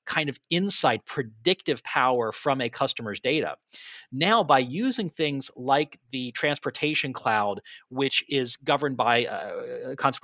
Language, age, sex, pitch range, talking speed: English, 40-59, male, 120-165 Hz, 135 wpm